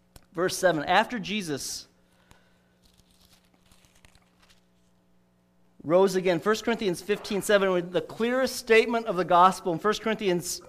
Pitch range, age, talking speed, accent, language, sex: 175-245 Hz, 40-59, 100 wpm, American, English, male